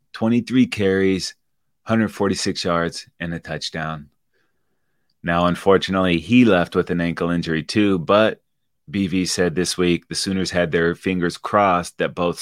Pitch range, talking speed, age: 85-105 Hz, 140 wpm, 30-49